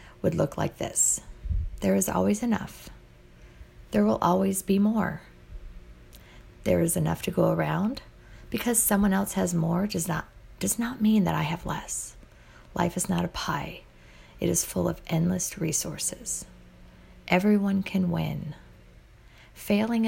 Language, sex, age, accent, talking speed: English, female, 40-59, American, 145 wpm